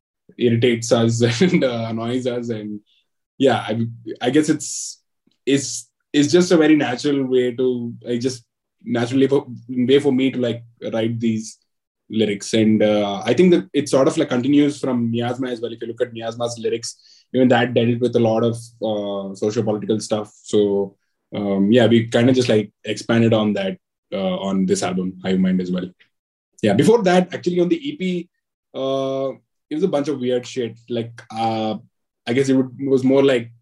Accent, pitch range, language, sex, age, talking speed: Indian, 115-135 Hz, English, male, 20-39, 190 wpm